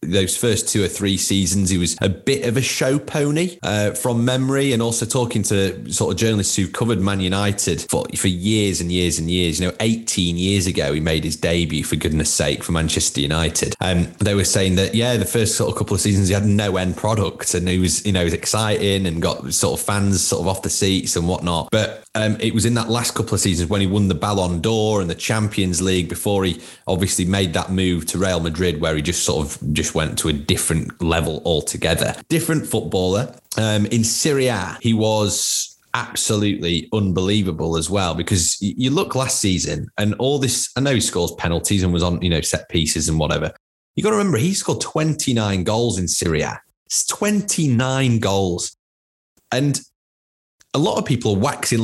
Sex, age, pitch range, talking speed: male, 30-49, 90-115 Hz, 210 wpm